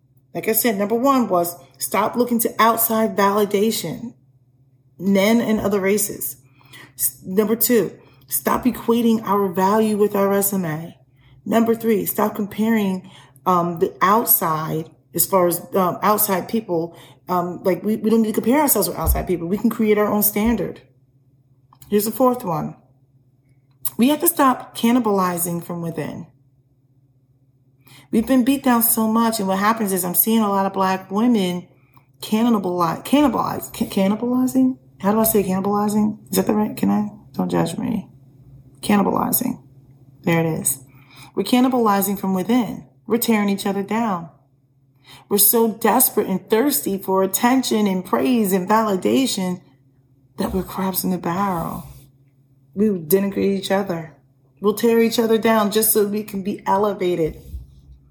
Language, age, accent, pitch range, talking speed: English, 30-49, American, 140-220 Hz, 150 wpm